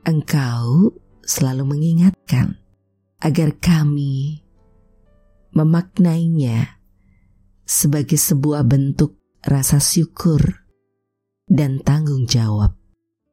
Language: Indonesian